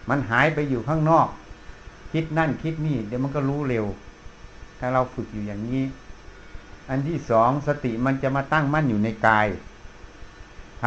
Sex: male